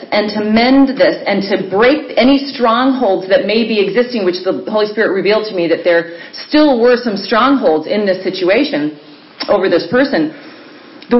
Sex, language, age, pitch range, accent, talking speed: female, English, 40-59, 205-285 Hz, American, 175 wpm